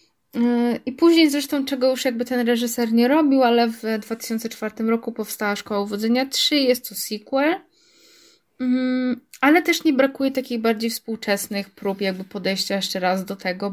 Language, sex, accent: Polish, female, native